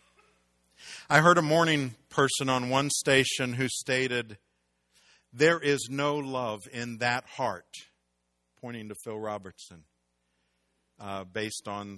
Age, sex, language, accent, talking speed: 50-69, male, English, American, 120 wpm